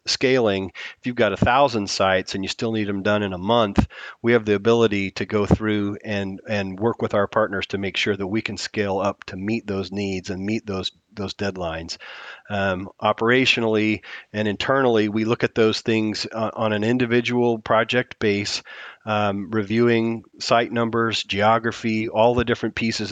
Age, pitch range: 40-59, 100-115 Hz